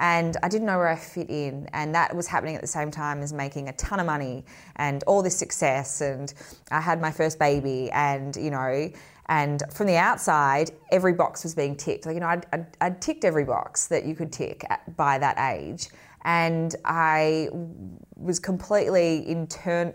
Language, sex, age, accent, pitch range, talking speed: English, female, 20-39, Australian, 140-170 Hz, 195 wpm